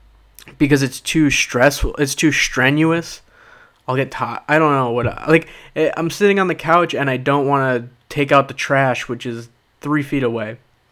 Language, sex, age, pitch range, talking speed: English, male, 20-39, 125-160 Hz, 185 wpm